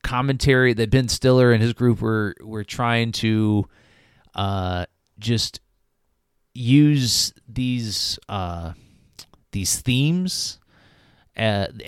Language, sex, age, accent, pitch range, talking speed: English, male, 30-49, American, 85-120 Hz, 95 wpm